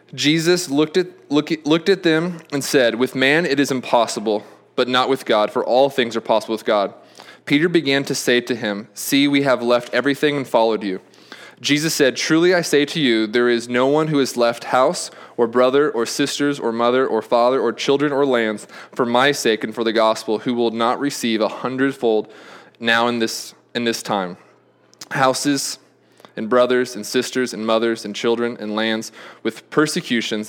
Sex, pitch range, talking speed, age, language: male, 115-145 Hz, 195 wpm, 20-39, English